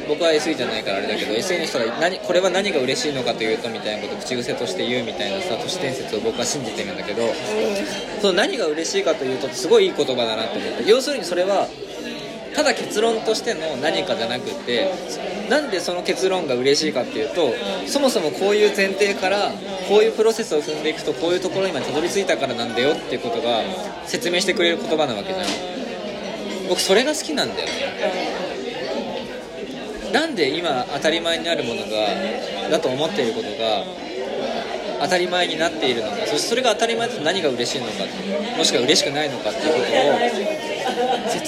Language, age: Japanese, 20-39